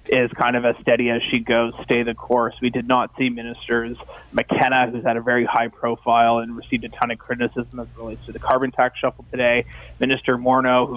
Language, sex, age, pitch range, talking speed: English, male, 20-39, 120-130 Hz, 225 wpm